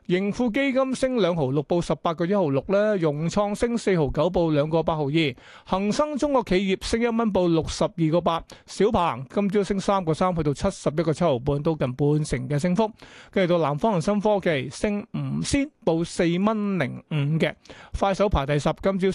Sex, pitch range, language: male, 155-195 Hz, Chinese